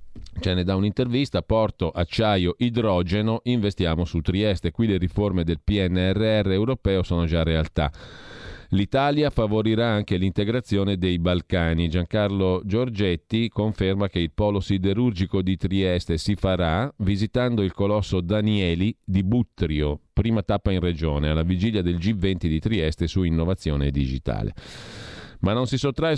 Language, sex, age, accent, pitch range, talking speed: Italian, male, 40-59, native, 85-105 Hz, 135 wpm